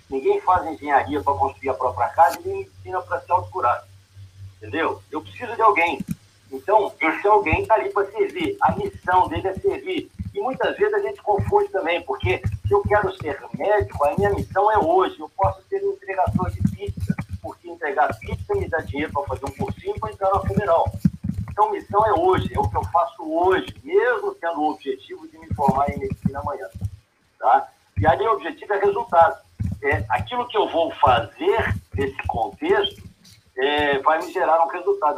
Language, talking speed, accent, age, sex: Portuguese, 195 wpm, Brazilian, 50-69, male